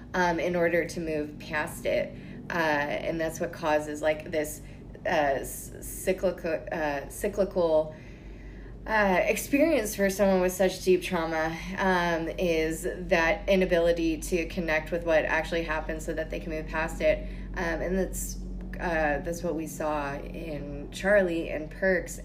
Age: 20-39